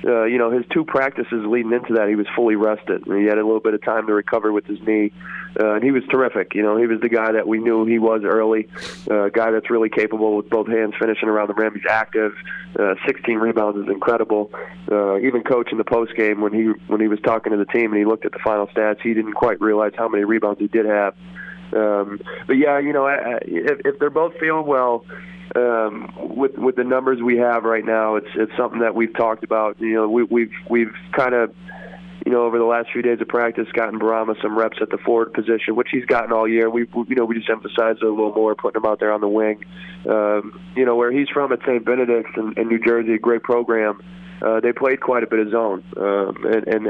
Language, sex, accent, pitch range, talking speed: English, male, American, 110-120 Hz, 255 wpm